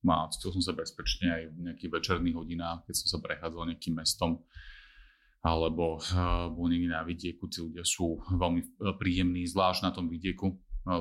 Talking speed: 180 wpm